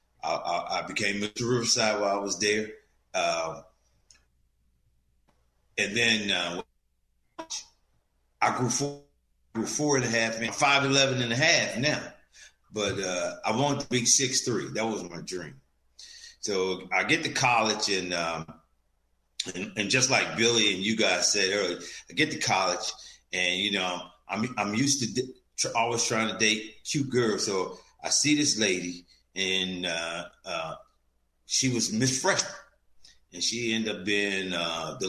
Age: 40-59